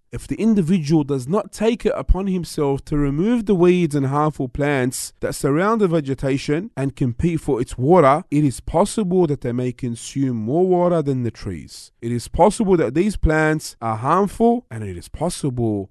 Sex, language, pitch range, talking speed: male, English, 110-150 Hz, 185 wpm